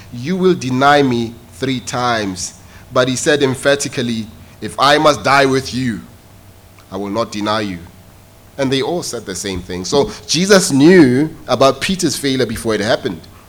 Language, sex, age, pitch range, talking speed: English, male, 30-49, 100-160 Hz, 165 wpm